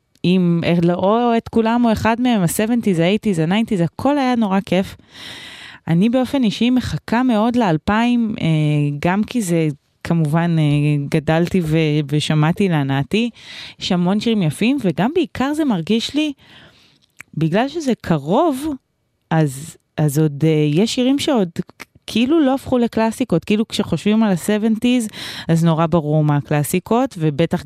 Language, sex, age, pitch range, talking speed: Hebrew, female, 20-39, 150-225 Hz, 125 wpm